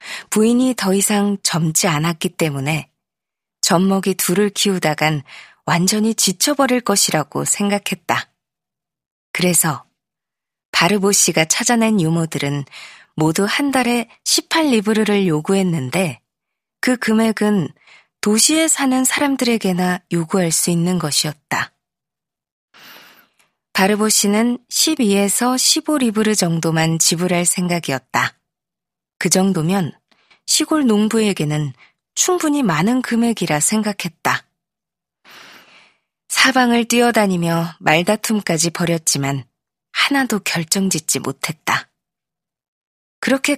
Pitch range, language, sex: 170-230 Hz, Korean, female